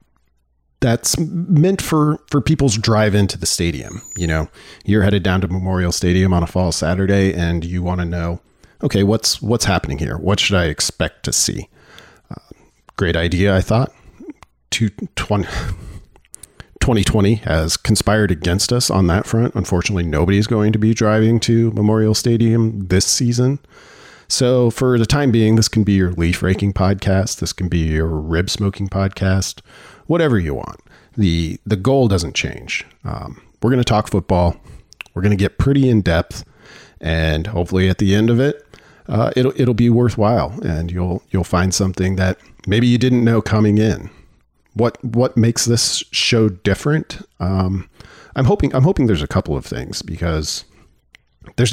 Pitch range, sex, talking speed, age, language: 85-115 Hz, male, 165 wpm, 40-59, English